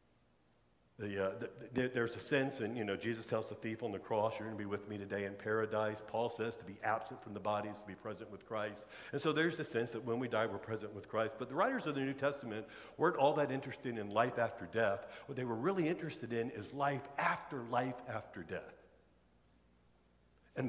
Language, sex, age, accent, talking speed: English, male, 60-79, American, 225 wpm